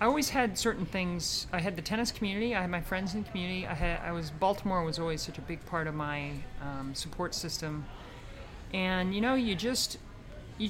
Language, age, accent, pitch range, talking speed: English, 40-59, American, 150-190 Hz, 220 wpm